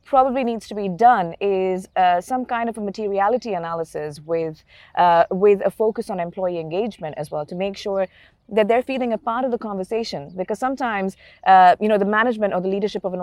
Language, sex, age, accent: English, female, 30-49, Indian